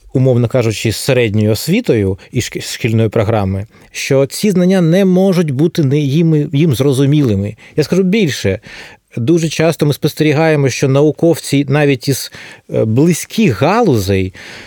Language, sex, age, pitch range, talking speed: Ukrainian, male, 30-49, 120-165 Hz, 125 wpm